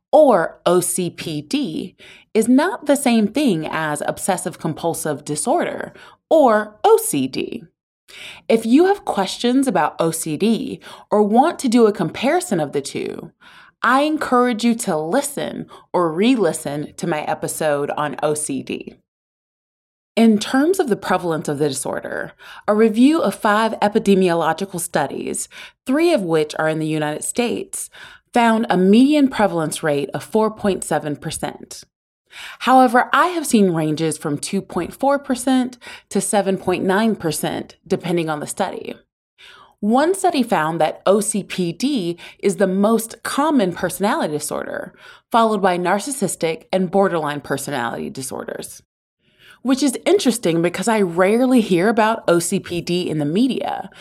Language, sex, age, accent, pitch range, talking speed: English, female, 30-49, American, 165-250 Hz, 125 wpm